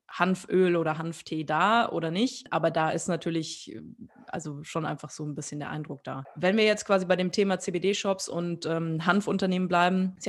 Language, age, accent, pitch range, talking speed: German, 20-39, German, 165-190 Hz, 185 wpm